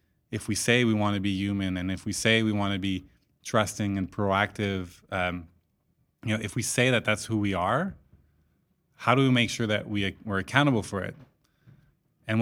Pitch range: 95-115 Hz